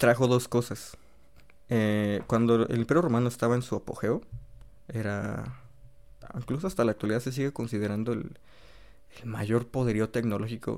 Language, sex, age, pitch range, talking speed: Spanish, male, 20-39, 105-125 Hz, 140 wpm